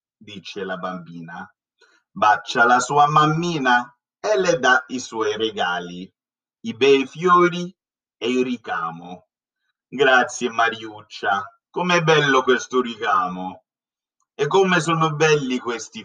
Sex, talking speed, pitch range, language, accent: male, 110 wpm, 115-175 Hz, Italian, native